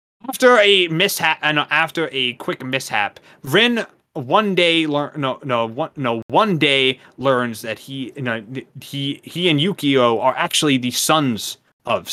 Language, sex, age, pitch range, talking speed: English, male, 20-39, 125-165 Hz, 160 wpm